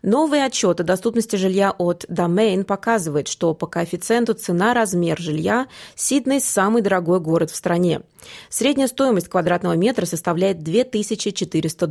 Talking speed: 125 wpm